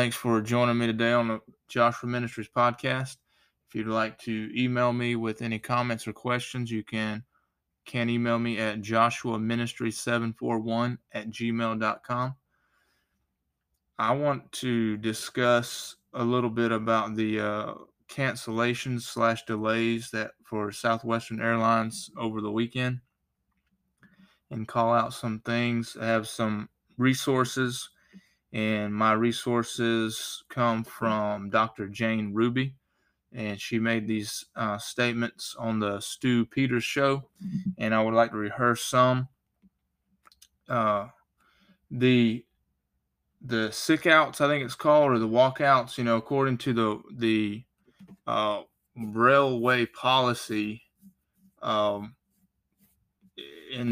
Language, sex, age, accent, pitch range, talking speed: English, male, 20-39, American, 110-125 Hz, 120 wpm